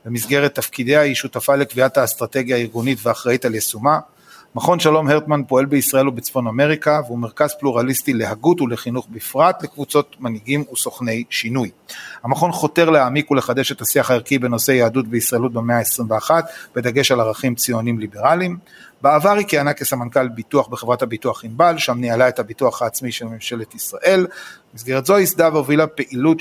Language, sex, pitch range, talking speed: Hebrew, male, 115-145 Hz, 150 wpm